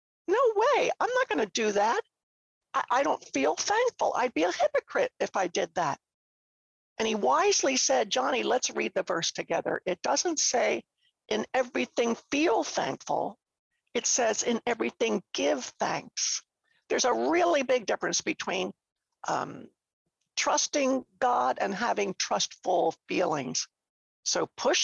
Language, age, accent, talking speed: English, 60-79, American, 140 wpm